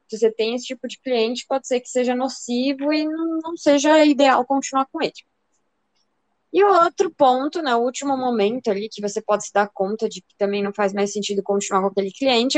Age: 20-39